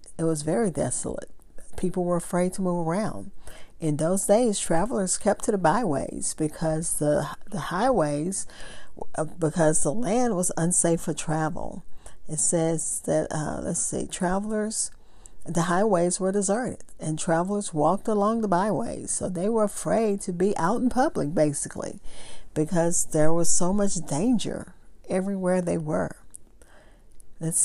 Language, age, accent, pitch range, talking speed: English, 40-59, American, 160-215 Hz, 145 wpm